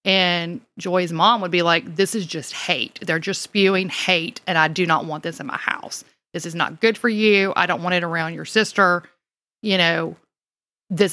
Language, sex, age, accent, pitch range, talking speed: English, female, 30-49, American, 170-205 Hz, 210 wpm